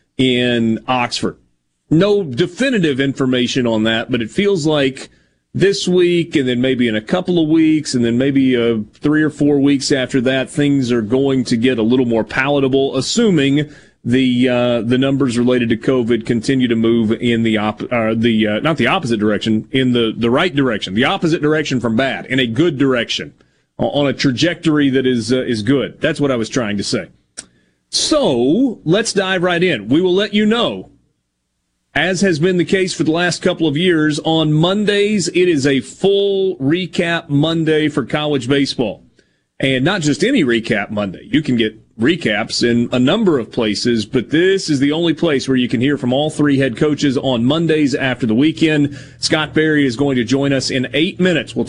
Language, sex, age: English, male, 30-49